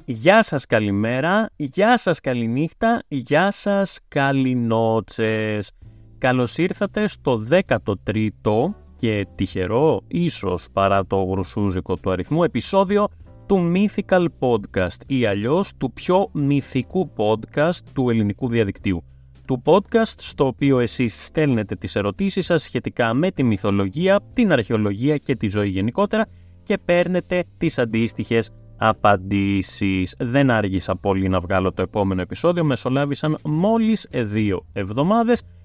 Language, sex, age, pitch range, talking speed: Greek, male, 30-49, 100-155 Hz, 120 wpm